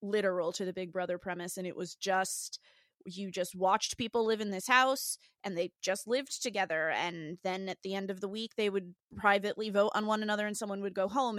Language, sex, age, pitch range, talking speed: English, female, 20-39, 195-225 Hz, 225 wpm